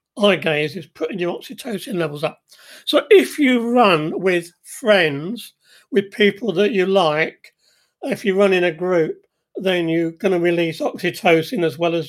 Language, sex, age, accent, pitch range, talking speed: English, male, 40-59, British, 160-200 Hz, 170 wpm